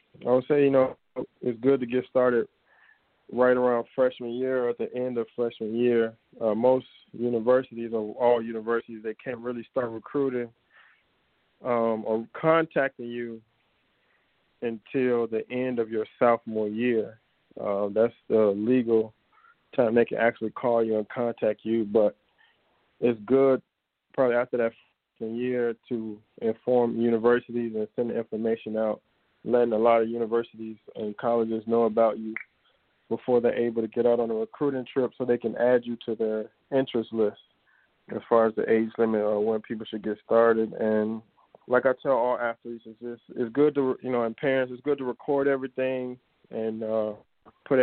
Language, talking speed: English, 170 wpm